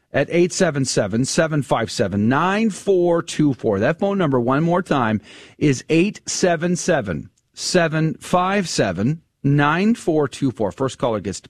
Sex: male